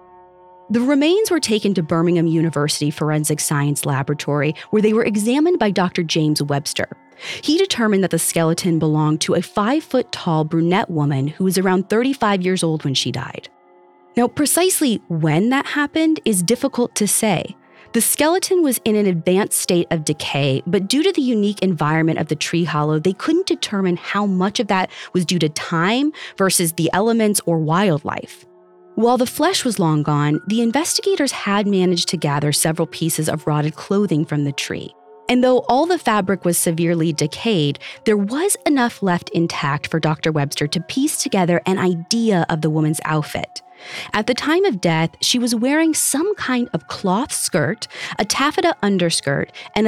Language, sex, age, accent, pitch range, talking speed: English, female, 30-49, American, 160-235 Hz, 175 wpm